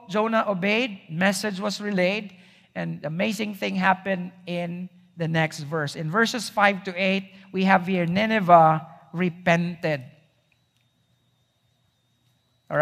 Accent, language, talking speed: Filipino, English, 110 wpm